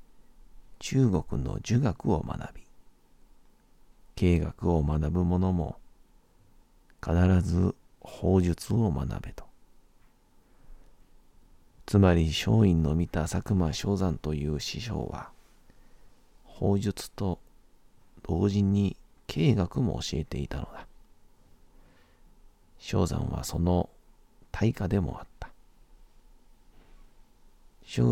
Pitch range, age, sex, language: 80-100 Hz, 40-59, male, Japanese